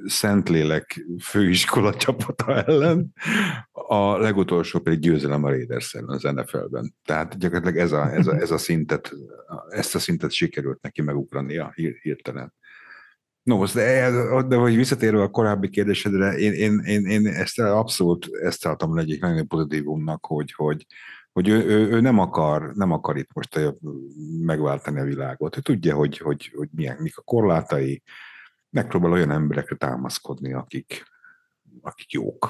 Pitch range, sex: 75-105 Hz, male